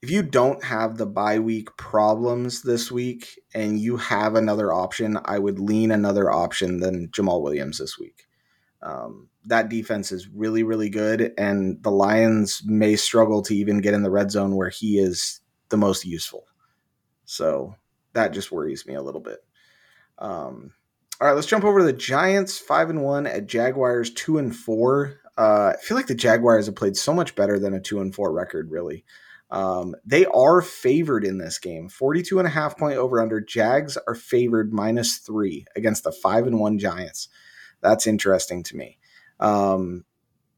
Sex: male